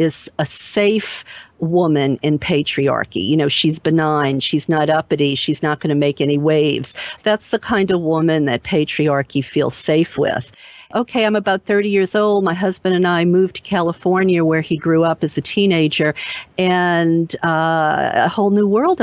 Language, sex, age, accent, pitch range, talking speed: English, female, 50-69, American, 155-200 Hz, 175 wpm